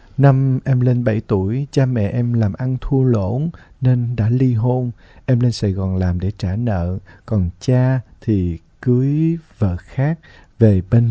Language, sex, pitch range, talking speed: Vietnamese, male, 100-130 Hz, 175 wpm